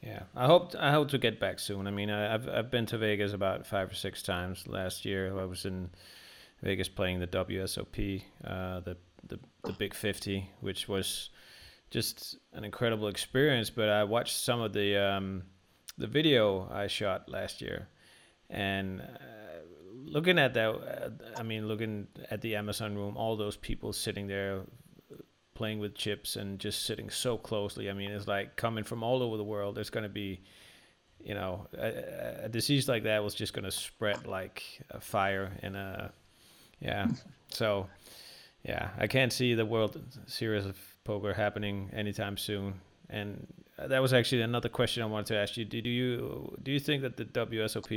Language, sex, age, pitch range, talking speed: Danish, male, 30-49, 100-110 Hz, 185 wpm